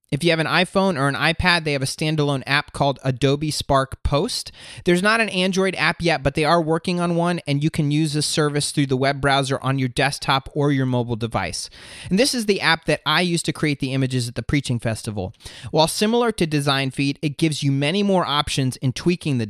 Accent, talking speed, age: American, 235 wpm, 30-49